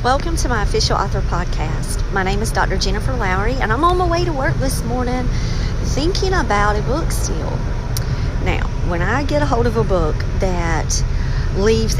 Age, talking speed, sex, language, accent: 40-59, 185 wpm, female, English, American